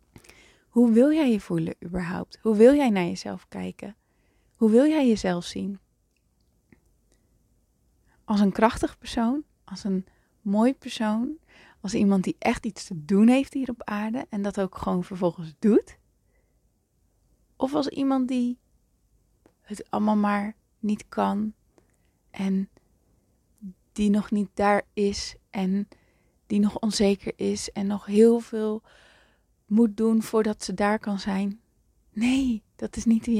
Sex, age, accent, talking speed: female, 20-39, Dutch, 140 wpm